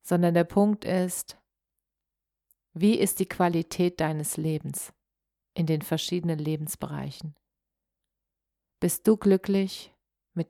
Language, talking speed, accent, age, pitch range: German, 105 wpm, German, 40-59, 160-190 Hz